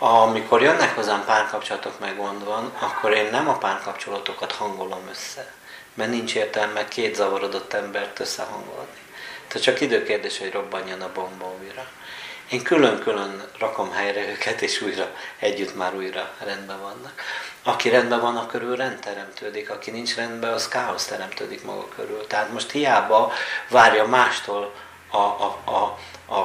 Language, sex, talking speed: Hungarian, male, 145 wpm